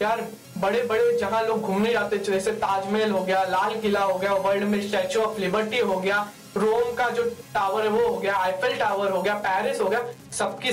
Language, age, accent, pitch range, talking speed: Hindi, 20-39, native, 200-240 Hz, 220 wpm